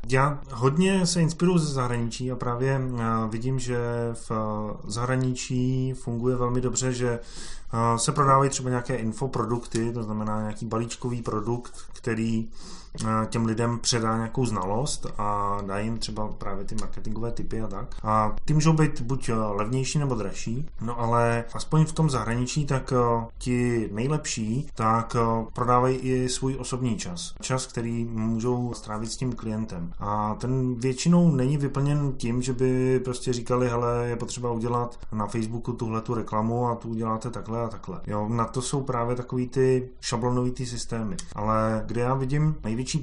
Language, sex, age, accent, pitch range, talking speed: Czech, male, 20-39, native, 115-130 Hz, 155 wpm